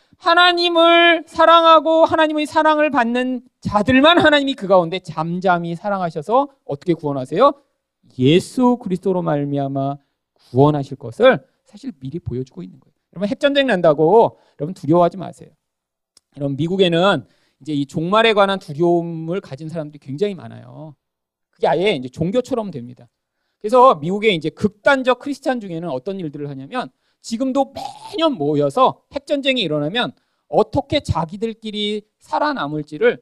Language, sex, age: Korean, male, 40-59